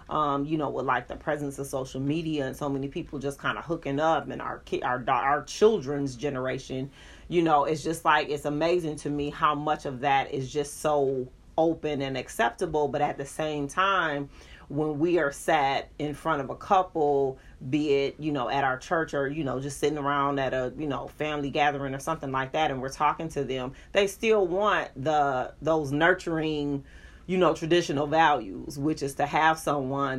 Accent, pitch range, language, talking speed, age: American, 140-160 Hz, English, 205 wpm, 30-49